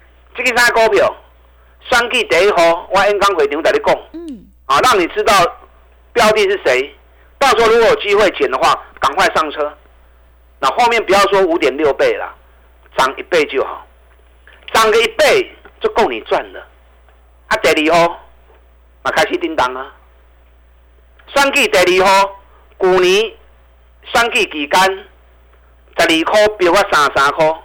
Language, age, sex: Chinese, 50-69, male